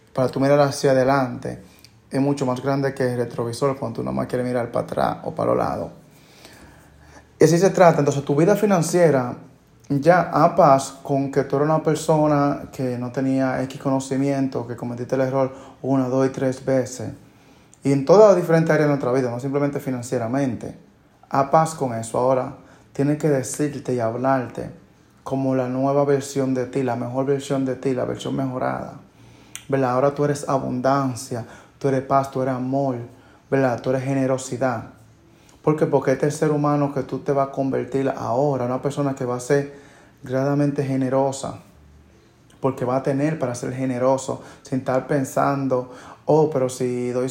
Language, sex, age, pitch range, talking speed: Spanish, male, 20-39, 130-145 Hz, 180 wpm